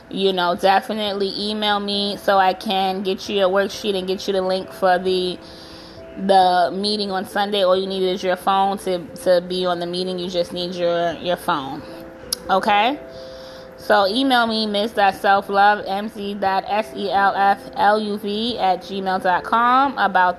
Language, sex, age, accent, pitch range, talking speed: English, female, 20-39, American, 180-200 Hz, 145 wpm